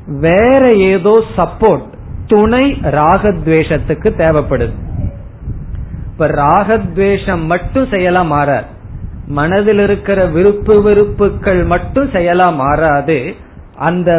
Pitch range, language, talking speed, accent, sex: 145-205 Hz, Tamil, 70 wpm, native, male